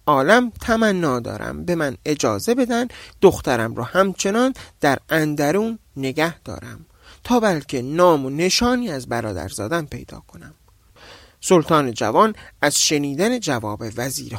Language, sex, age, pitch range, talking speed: Persian, male, 40-59, 145-225 Hz, 125 wpm